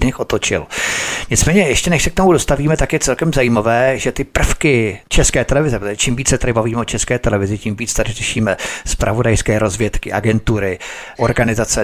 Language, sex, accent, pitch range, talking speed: Czech, male, native, 105-120 Hz, 165 wpm